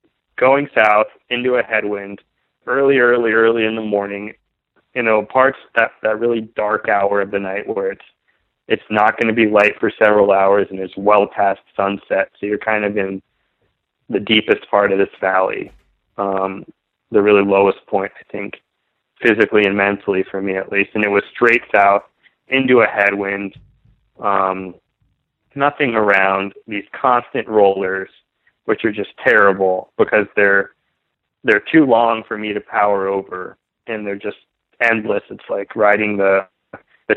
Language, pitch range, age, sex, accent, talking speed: English, 100-115 Hz, 20-39, male, American, 160 wpm